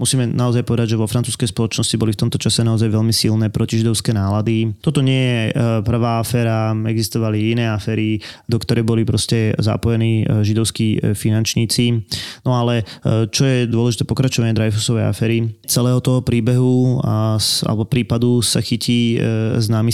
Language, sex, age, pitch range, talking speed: Slovak, male, 20-39, 110-125 Hz, 140 wpm